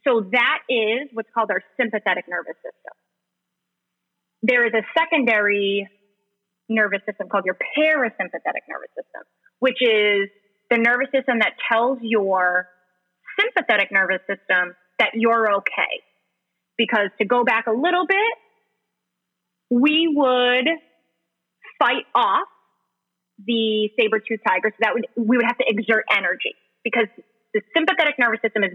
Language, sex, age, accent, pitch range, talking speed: English, female, 30-49, American, 210-275 Hz, 130 wpm